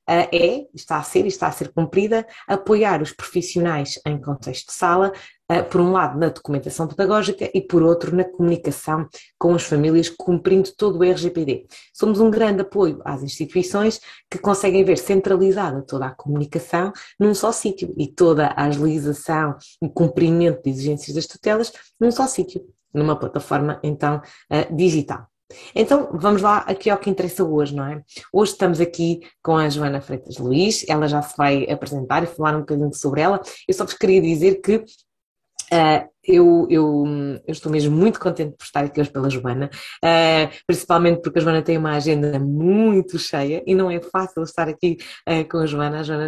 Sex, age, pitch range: female, 20-39, 150-190 Hz